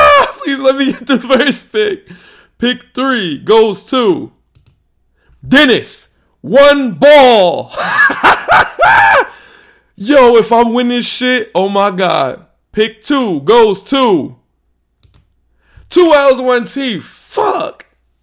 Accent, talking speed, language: American, 100 wpm, English